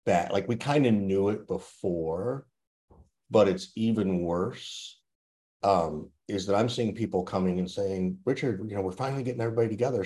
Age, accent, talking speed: 50-69, American, 175 wpm